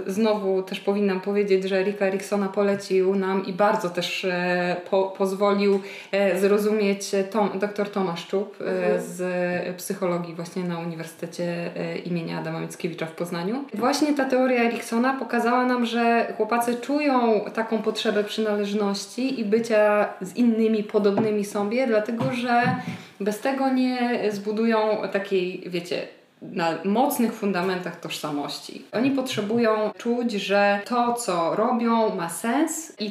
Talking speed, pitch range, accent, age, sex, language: 125 wpm, 180-220 Hz, native, 20-39, female, Polish